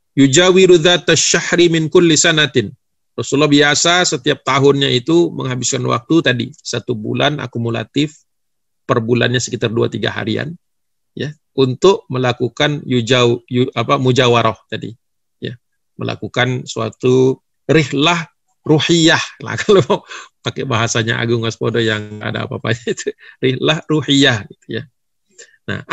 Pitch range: 130-195 Hz